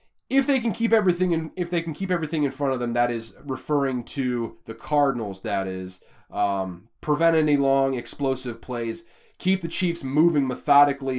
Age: 30-49